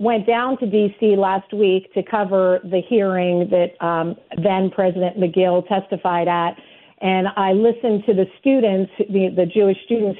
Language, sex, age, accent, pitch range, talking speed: English, female, 40-59, American, 190-240 Hz, 155 wpm